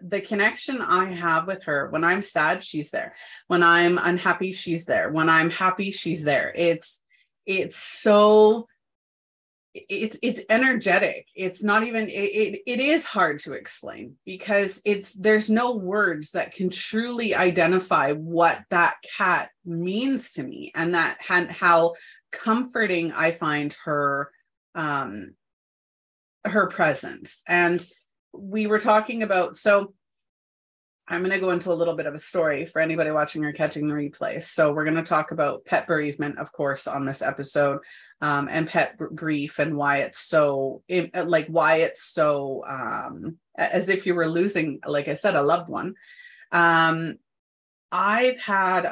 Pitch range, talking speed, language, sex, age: 155-200 Hz, 155 wpm, English, female, 30-49